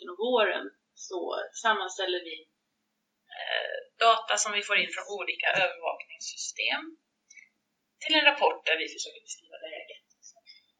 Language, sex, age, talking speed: Swedish, female, 30-49, 130 wpm